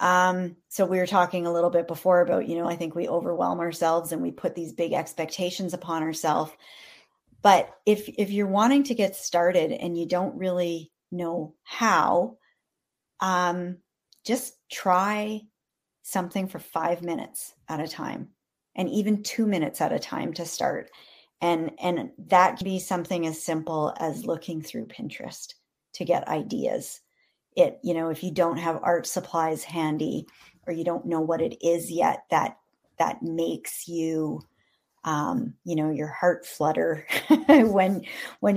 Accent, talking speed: American, 160 wpm